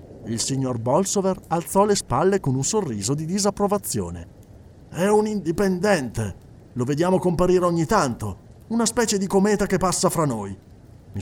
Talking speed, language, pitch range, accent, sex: 150 wpm, Italian, 115-185 Hz, native, male